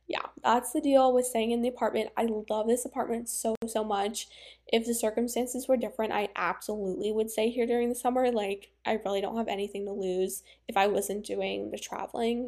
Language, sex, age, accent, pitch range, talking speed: English, female, 10-29, American, 200-245 Hz, 205 wpm